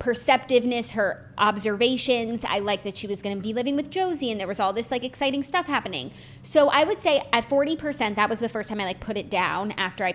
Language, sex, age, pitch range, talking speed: English, female, 20-39, 200-255 Hz, 240 wpm